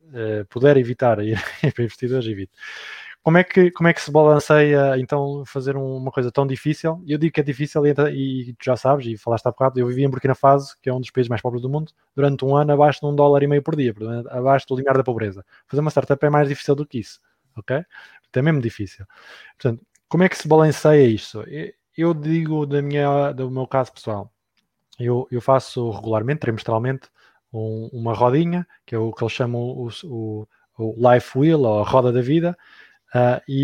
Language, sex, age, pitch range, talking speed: Portuguese, male, 20-39, 120-155 Hz, 205 wpm